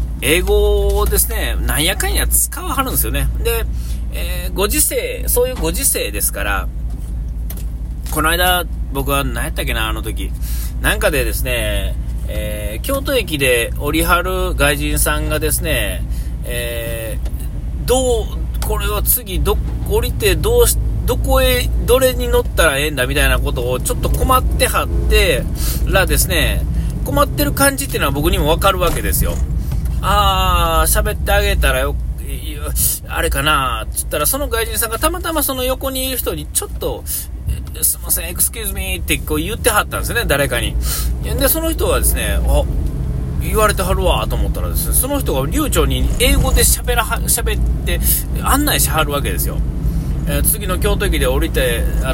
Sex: male